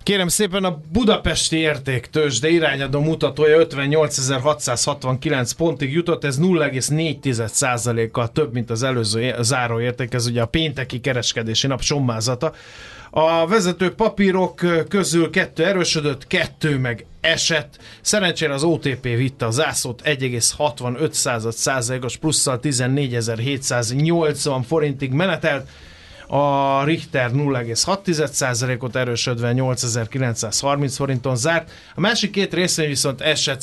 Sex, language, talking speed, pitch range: male, Hungarian, 105 wpm, 125-155 Hz